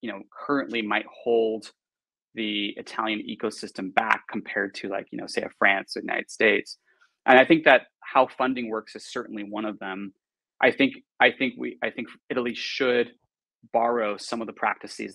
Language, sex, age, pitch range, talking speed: Italian, male, 20-39, 105-120 Hz, 180 wpm